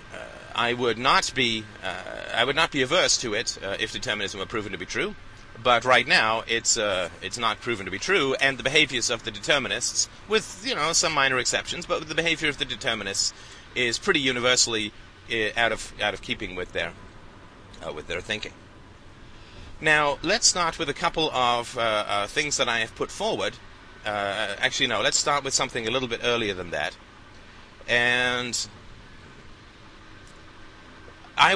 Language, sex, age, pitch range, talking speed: English, male, 30-49, 100-130 Hz, 180 wpm